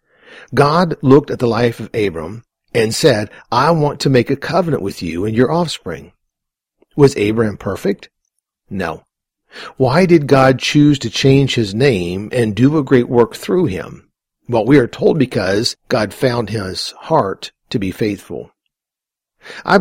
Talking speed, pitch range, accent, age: 160 wpm, 110-150 Hz, American, 50-69